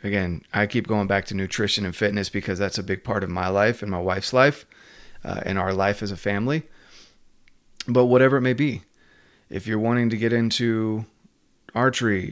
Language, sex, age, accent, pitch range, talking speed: English, male, 30-49, American, 100-120 Hz, 195 wpm